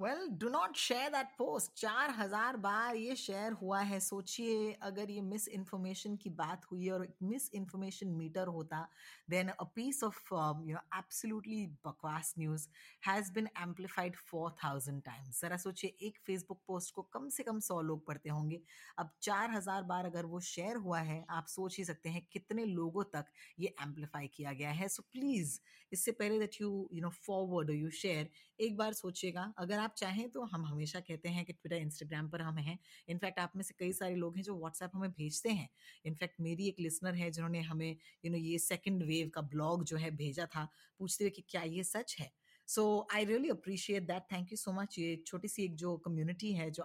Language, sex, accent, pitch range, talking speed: Hindi, female, native, 165-200 Hz, 150 wpm